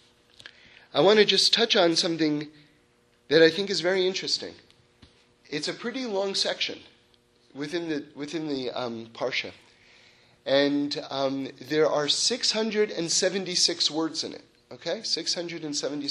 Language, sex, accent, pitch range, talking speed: English, male, American, 140-190 Hz, 155 wpm